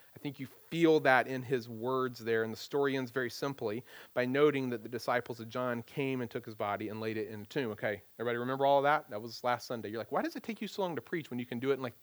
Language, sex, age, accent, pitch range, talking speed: English, male, 40-59, American, 135-195 Hz, 305 wpm